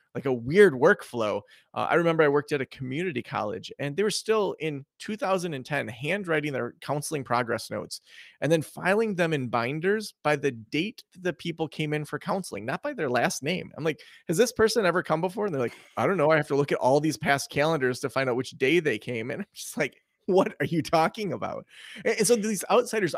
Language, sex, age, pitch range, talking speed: English, male, 30-49, 135-185 Hz, 225 wpm